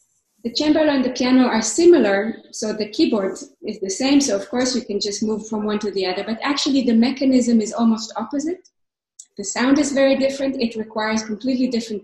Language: Italian